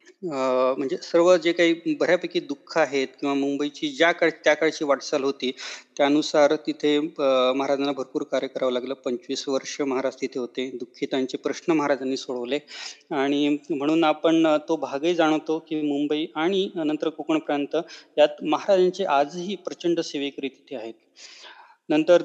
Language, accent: Marathi, native